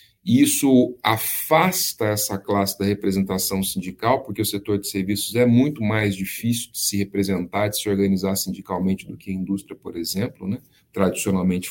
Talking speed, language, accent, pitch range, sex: 160 wpm, Portuguese, Brazilian, 100-120 Hz, male